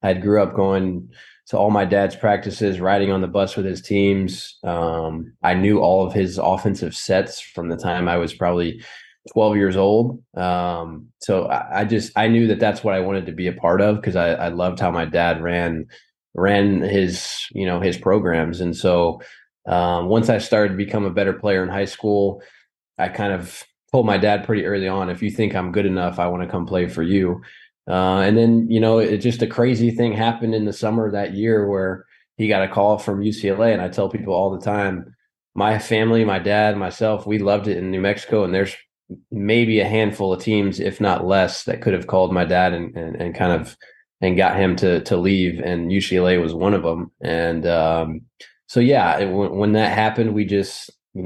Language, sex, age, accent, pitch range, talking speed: English, male, 20-39, American, 90-105 Hz, 220 wpm